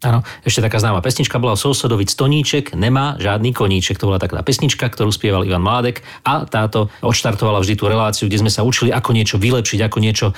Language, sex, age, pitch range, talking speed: Slovak, male, 40-59, 105-135 Hz, 195 wpm